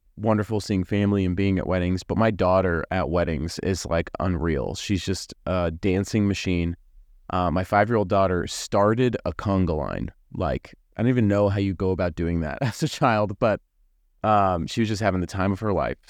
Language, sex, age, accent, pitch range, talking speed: English, male, 30-49, American, 90-110 Hz, 200 wpm